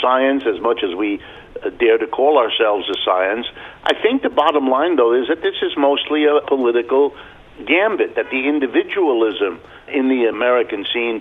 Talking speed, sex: 170 wpm, male